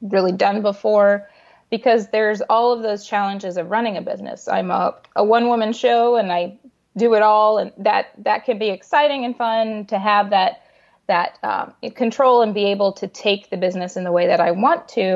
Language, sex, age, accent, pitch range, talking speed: English, female, 20-39, American, 200-245 Hz, 205 wpm